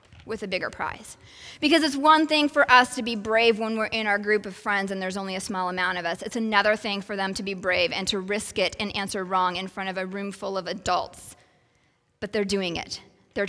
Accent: American